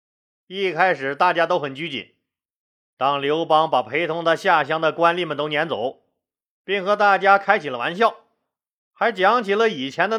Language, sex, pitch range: Chinese, male, 160-210 Hz